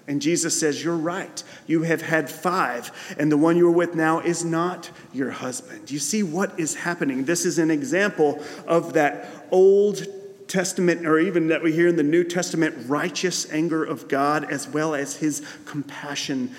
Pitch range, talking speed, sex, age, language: 140-175 Hz, 180 wpm, male, 40-59, English